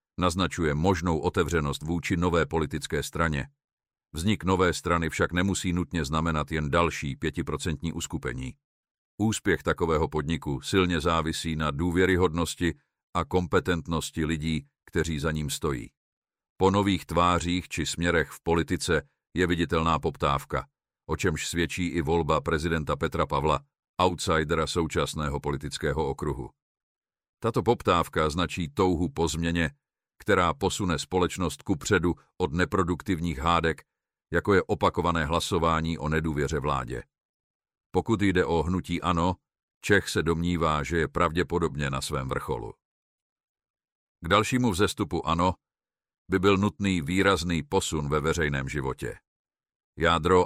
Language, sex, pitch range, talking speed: Czech, male, 80-90 Hz, 120 wpm